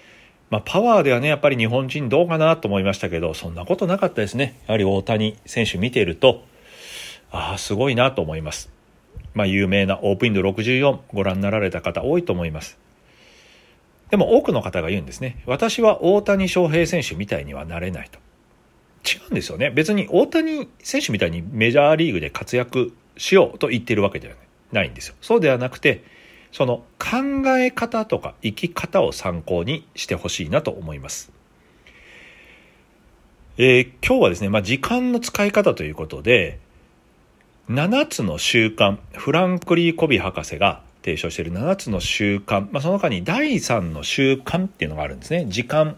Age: 40-59